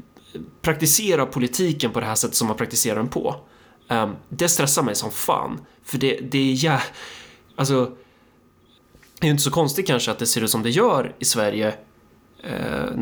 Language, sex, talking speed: Swedish, male, 185 wpm